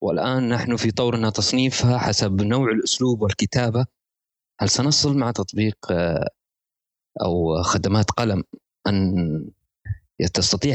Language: Arabic